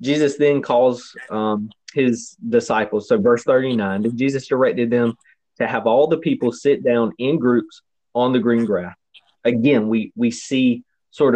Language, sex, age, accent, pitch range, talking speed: English, male, 30-49, American, 110-130 Hz, 160 wpm